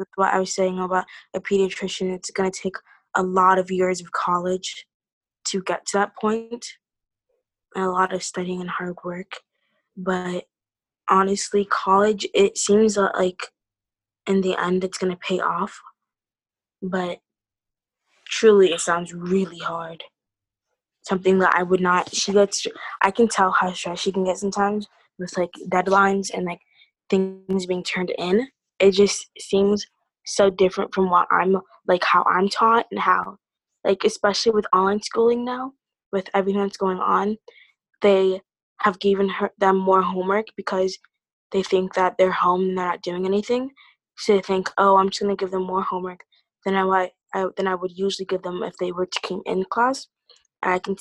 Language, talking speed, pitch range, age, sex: English, 165 wpm, 180-200 Hz, 20-39, female